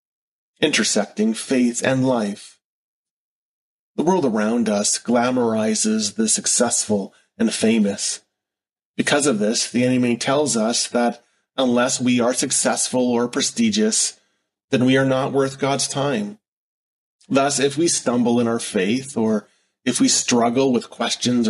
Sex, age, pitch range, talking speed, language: male, 30-49, 125-165 Hz, 130 wpm, English